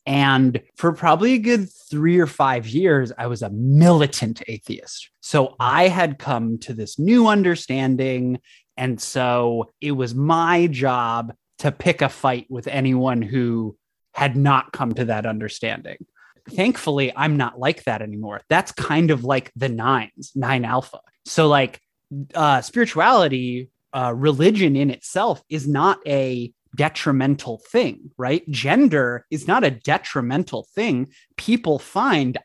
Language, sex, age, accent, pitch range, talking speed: English, male, 20-39, American, 125-155 Hz, 140 wpm